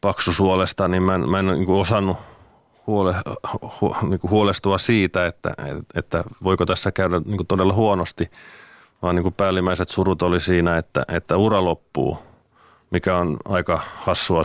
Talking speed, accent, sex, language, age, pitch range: 155 wpm, native, male, Finnish, 30-49, 85-100 Hz